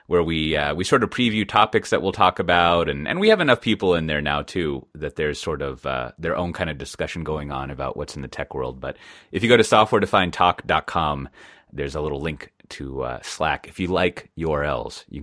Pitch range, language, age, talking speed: 70-95 Hz, English, 30-49, 230 wpm